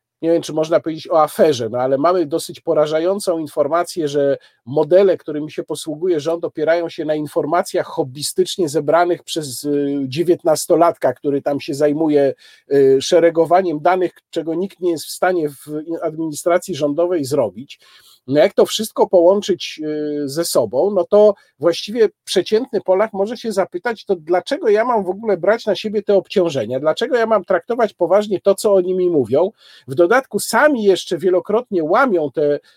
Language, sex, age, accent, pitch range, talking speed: Polish, male, 50-69, native, 155-200 Hz, 160 wpm